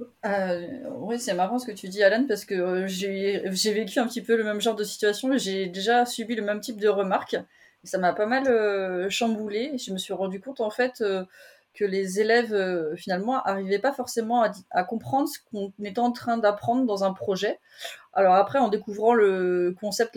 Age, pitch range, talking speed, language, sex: 30-49, 190-230 Hz, 215 wpm, French, female